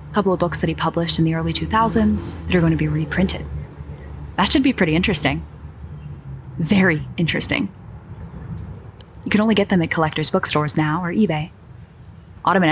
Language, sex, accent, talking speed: English, female, American, 165 wpm